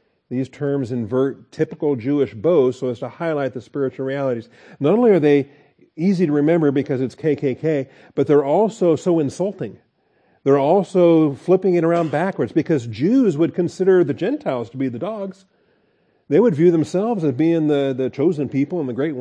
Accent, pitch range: American, 120-150 Hz